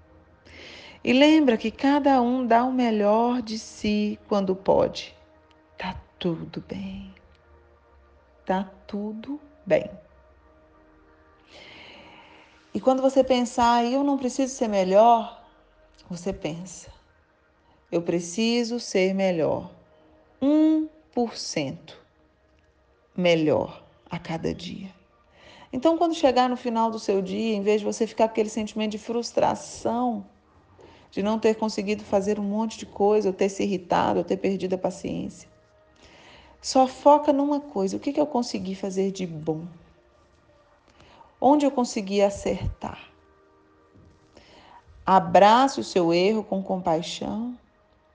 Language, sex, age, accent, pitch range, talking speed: Portuguese, female, 40-59, Brazilian, 160-240 Hz, 120 wpm